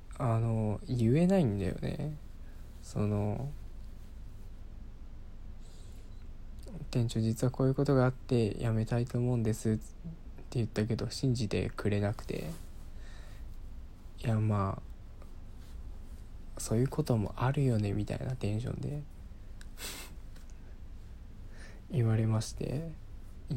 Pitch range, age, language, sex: 95-120 Hz, 20-39, Japanese, male